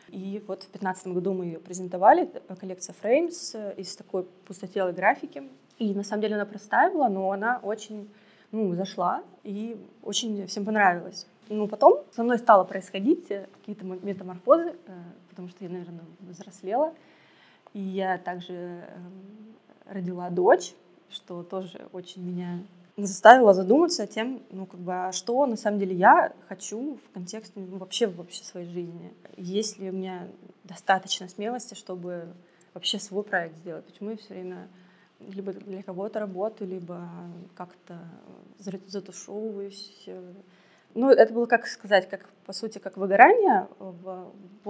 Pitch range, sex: 185-210 Hz, female